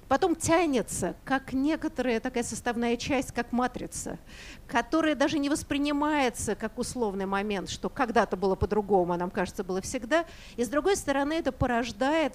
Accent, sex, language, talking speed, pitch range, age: native, female, Russian, 145 wpm, 210-270 Hz, 50-69